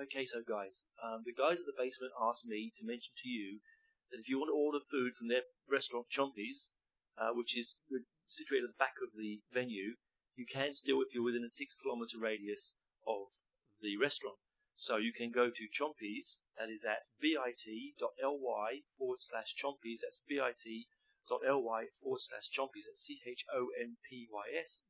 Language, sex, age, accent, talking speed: English, male, 30-49, British, 165 wpm